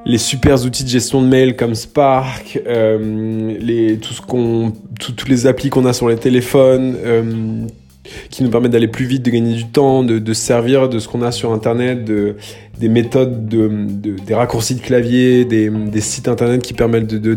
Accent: French